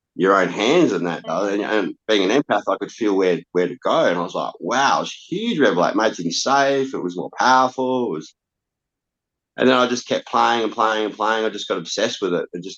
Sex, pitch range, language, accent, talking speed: male, 80-100 Hz, English, Australian, 250 wpm